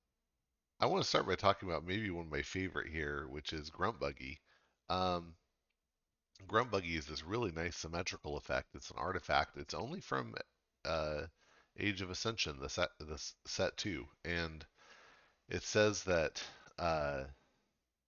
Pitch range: 75-90 Hz